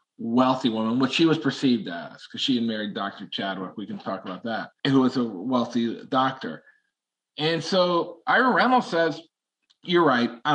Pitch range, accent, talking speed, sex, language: 125-190 Hz, American, 175 wpm, male, English